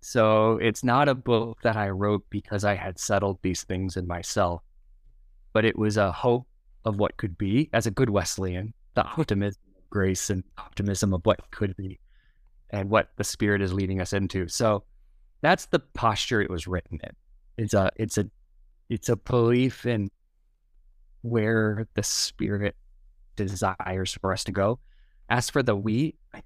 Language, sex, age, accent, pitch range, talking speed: English, male, 20-39, American, 90-115 Hz, 170 wpm